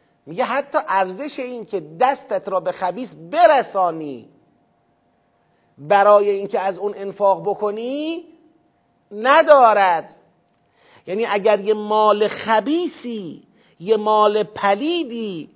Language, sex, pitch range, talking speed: Persian, male, 180-250 Hz, 95 wpm